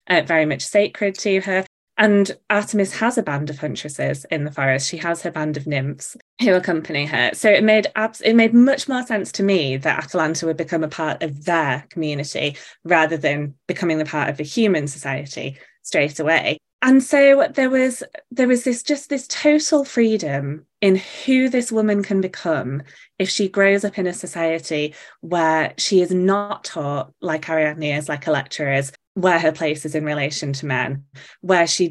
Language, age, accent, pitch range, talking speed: English, 20-39, British, 155-205 Hz, 190 wpm